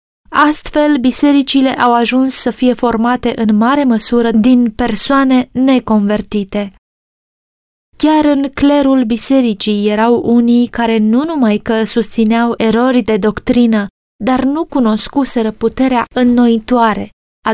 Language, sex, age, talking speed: Romanian, female, 20-39, 115 wpm